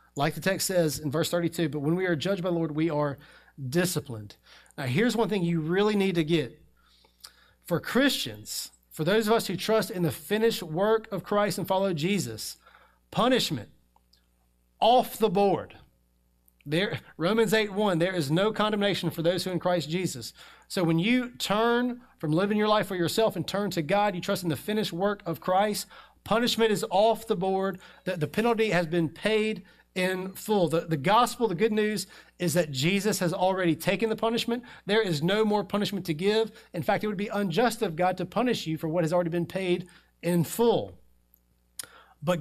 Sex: male